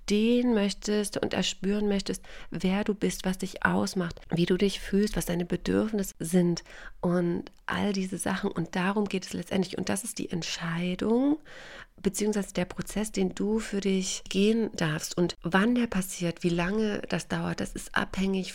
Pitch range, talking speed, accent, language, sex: 175-200 Hz, 170 wpm, German, German, female